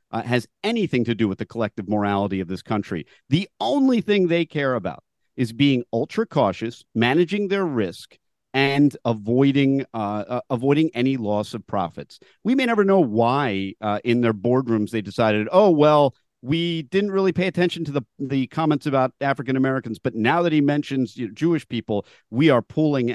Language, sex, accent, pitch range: English, male, American, 115-170 Hz